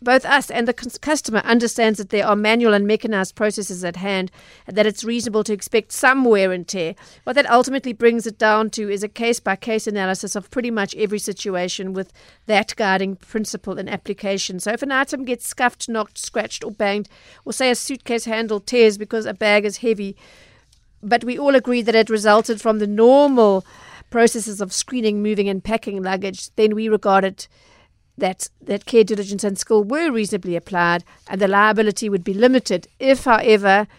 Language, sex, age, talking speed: English, female, 50-69, 185 wpm